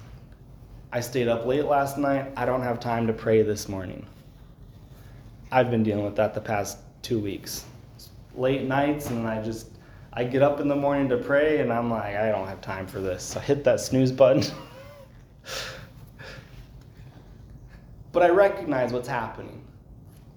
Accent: American